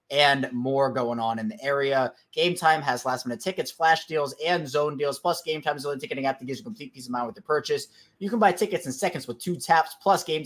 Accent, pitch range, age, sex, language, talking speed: American, 125-165 Hz, 20-39, male, English, 265 wpm